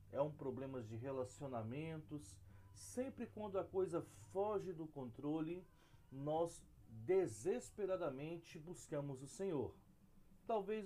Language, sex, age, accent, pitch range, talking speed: Portuguese, male, 40-59, Brazilian, 130-190 Hz, 100 wpm